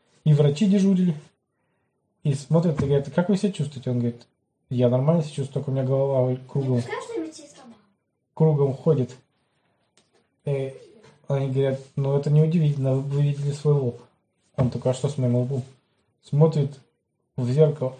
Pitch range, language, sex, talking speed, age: 130-155 Hz, Russian, male, 150 wpm, 20-39